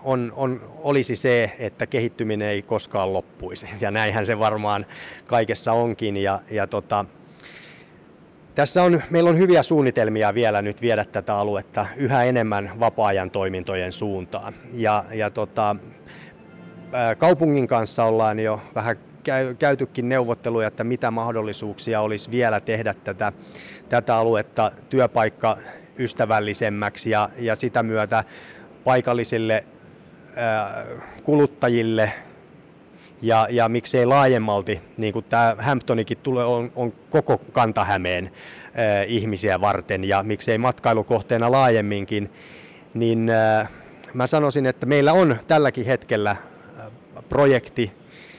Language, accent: Finnish, native